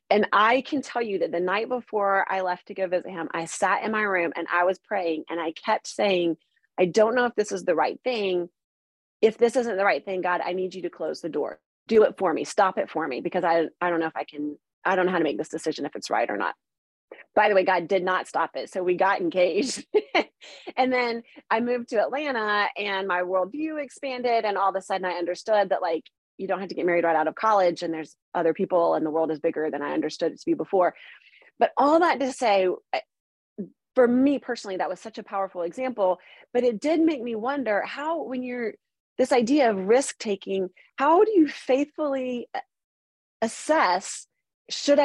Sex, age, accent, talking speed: female, 30-49, American, 225 wpm